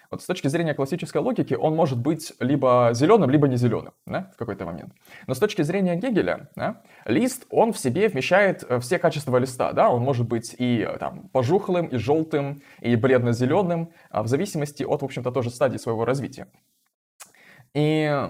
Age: 20-39